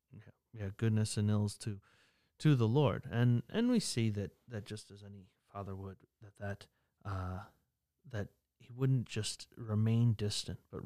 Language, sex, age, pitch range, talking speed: English, male, 30-49, 100-125 Hz, 160 wpm